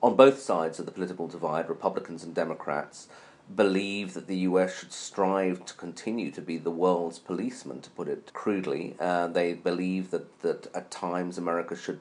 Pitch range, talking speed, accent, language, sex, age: 85-100 Hz, 180 wpm, British, English, male, 40-59